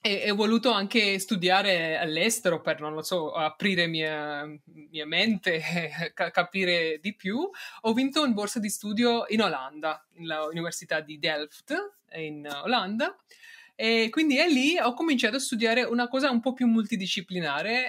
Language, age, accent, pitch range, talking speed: Italian, 20-39, native, 180-250 Hz, 150 wpm